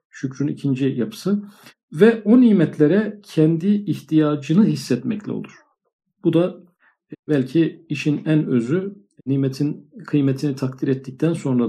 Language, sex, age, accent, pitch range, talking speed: Turkish, male, 50-69, native, 130-170 Hz, 110 wpm